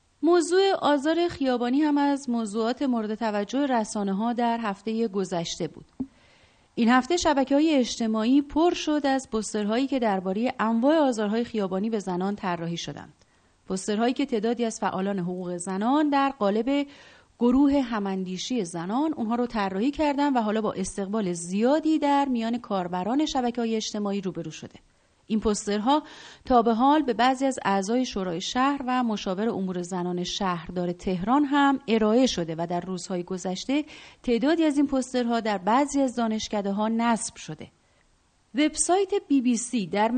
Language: Persian